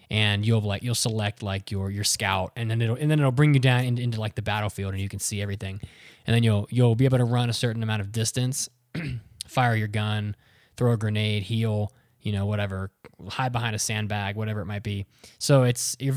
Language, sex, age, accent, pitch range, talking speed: English, male, 20-39, American, 110-130 Hz, 225 wpm